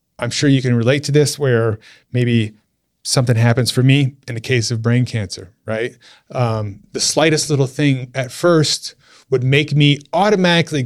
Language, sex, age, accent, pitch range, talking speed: English, male, 30-49, American, 110-140 Hz, 170 wpm